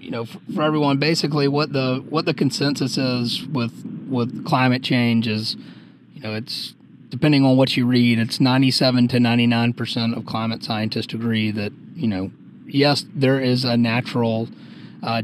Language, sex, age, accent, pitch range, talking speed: English, male, 30-49, American, 110-130 Hz, 165 wpm